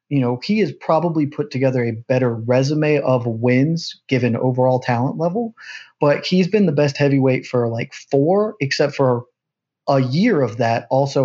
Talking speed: 170 wpm